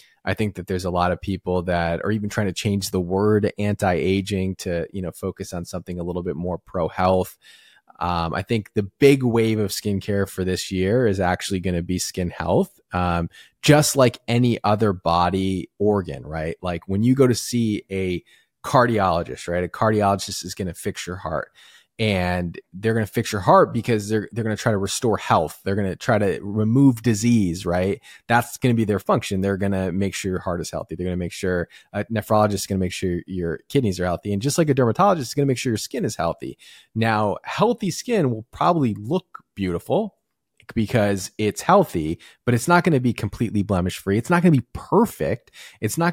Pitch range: 90-115 Hz